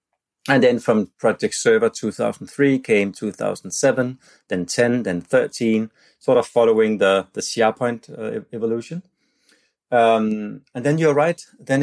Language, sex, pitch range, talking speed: English, male, 110-145 Hz, 135 wpm